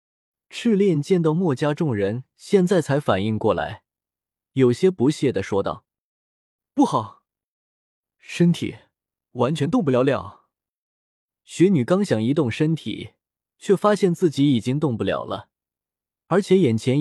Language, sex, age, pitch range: Chinese, male, 20-39, 110-180 Hz